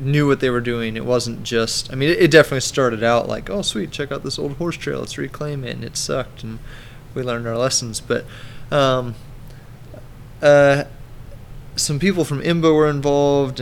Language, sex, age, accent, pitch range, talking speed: English, male, 20-39, American, 115-135 Hz, 195 wpm